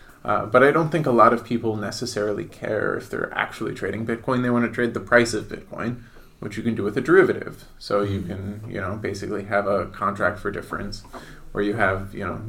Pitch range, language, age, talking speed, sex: 100-115 Hz, English, 20-39, 225 wpm, male